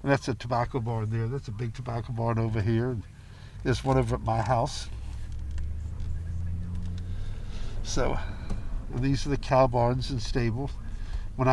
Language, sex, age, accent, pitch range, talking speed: English, male, 60-79, American, 110-140 Hz, 140 wpm